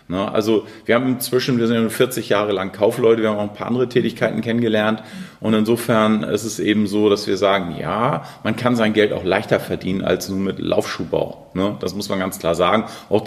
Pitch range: 95-115 Hz